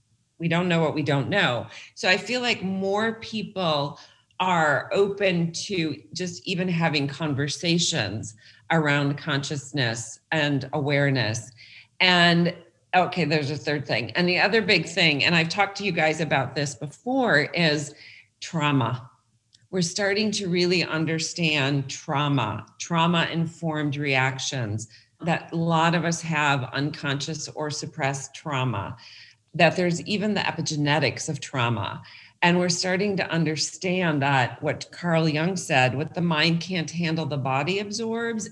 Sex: female